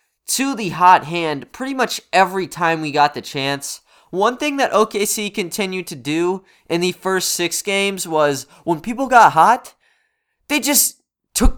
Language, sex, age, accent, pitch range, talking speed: English, male, 20-39, American, 150-200 Hz, 165 wpm